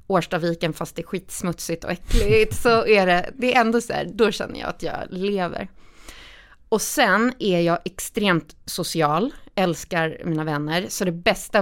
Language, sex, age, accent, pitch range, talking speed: Swedish, female, 20-39, native, 180-240 Hz, 170 wpm